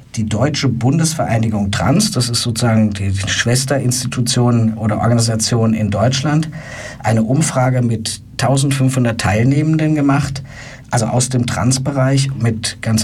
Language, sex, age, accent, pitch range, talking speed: German, male, 50-69, German, 110-130 Hz, 115 wpm